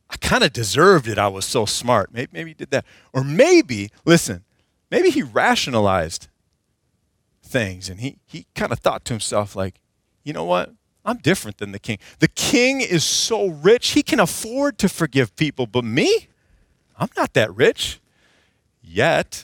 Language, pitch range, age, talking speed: English, 110-160 Hz, 40-59, 175 wpm